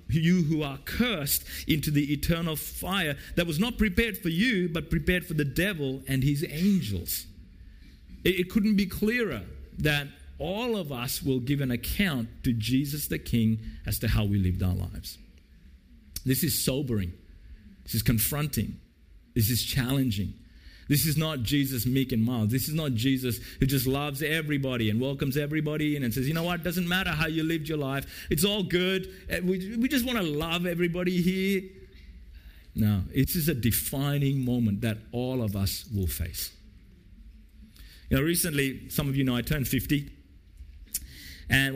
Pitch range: 100-160 Hz